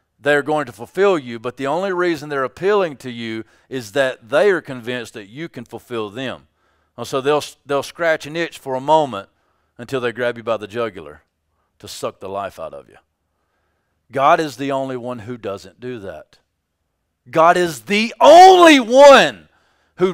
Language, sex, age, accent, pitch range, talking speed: English, male, 40-59, American, 110-170 Hz, 185 wpm